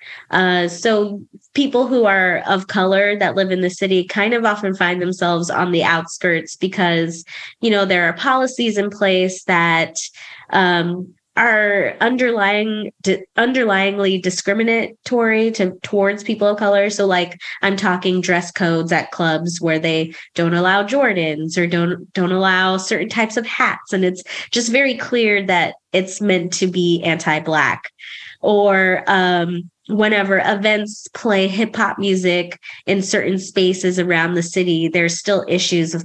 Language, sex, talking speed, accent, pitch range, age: English, female, 150 wpm, American, 175-205 Hz, 20-39